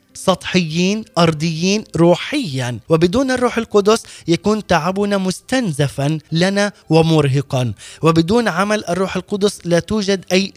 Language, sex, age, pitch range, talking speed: Arabic, male, 20-39, 155-200 Hz, 100 wpm